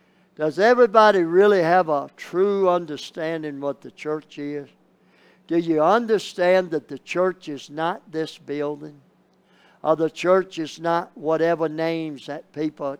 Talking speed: 140 wpm